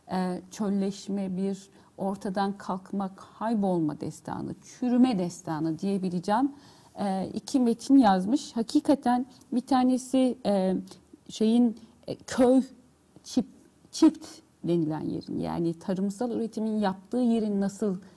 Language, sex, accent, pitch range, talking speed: Turkish, female, native, 185-245 Hz, 100 wpm